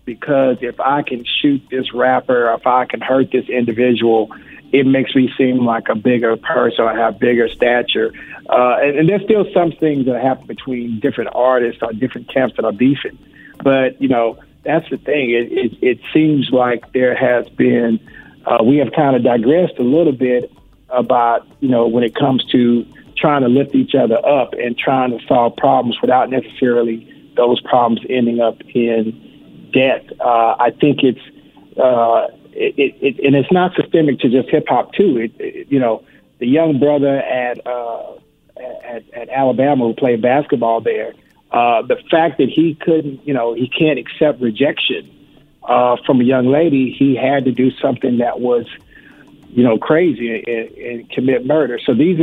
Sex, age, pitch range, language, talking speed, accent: male, 50-69, 120-140 Hz, English, 180 wpm, American